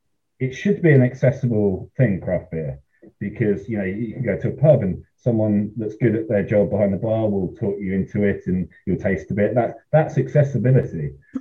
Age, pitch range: 30-49, 95-125 Hz